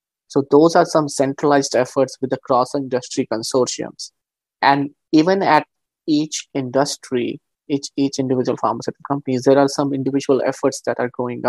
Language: English